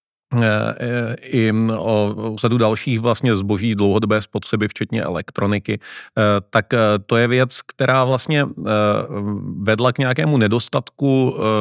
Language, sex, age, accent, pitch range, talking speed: Czech, male, 40-59, native, 105-130 Hz, 105 wpm